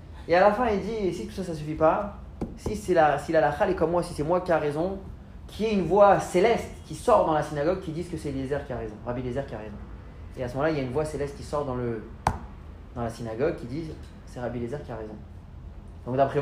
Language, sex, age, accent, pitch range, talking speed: French, male, 30-49, French, 120-190 Hz, 285 wpm